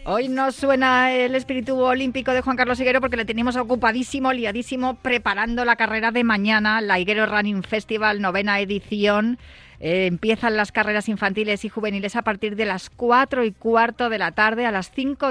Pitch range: 185-235 Hz